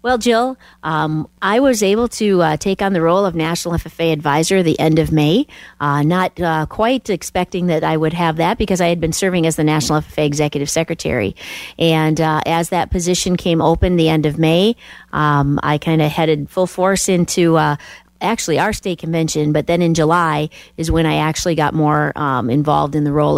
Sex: female